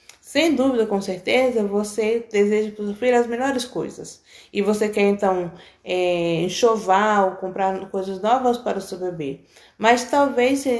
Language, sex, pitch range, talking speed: Portuguese, female, 200-250 Hz, 150 wpm